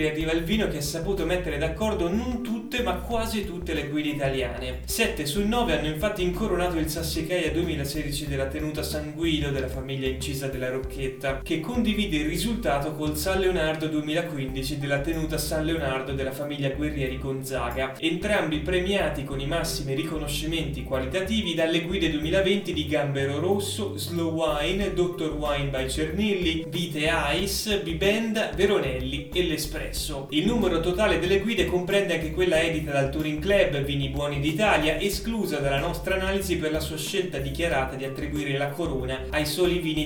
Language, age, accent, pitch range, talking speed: Italian, 20-39, native, 140-185 Hz, 160 wpm